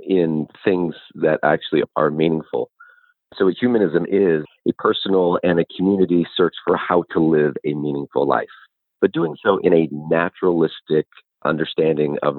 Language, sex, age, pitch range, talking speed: English, male, 40-59, 75-95 Hz, 150 wpm